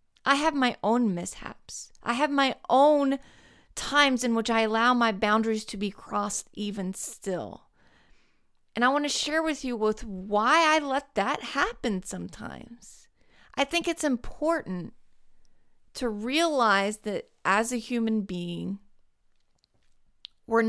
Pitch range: 200-260 Hz